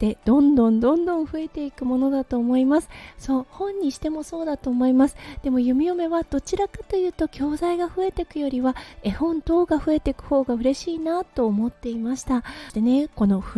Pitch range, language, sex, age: 235-310 Hz, Japanese, female, 20-39